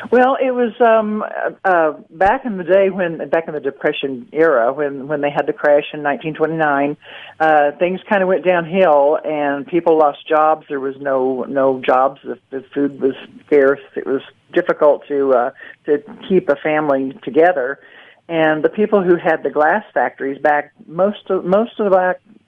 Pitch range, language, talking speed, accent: 135-170 Hz, English, 185 wpm, American